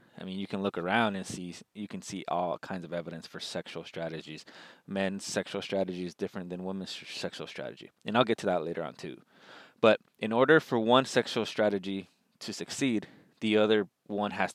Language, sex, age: English, male, 20-39